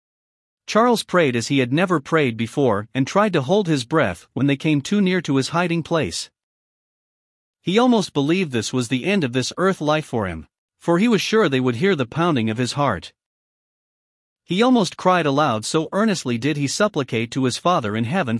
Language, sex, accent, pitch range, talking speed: English, male, American, 125-180 Hz, 200 wpm